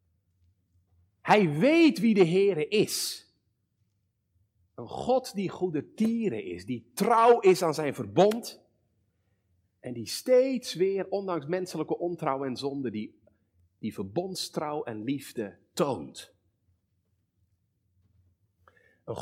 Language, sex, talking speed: Dutch, male, 105 wpm